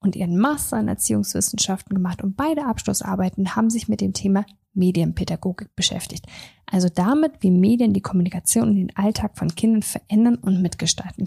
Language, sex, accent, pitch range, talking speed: German, female, German, 185-230 Hz, 160 wpm